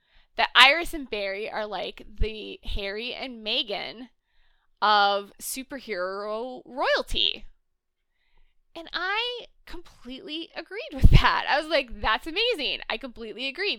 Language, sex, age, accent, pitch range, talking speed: English, female, 20-39, American, 215-340 Hz, 120 wpm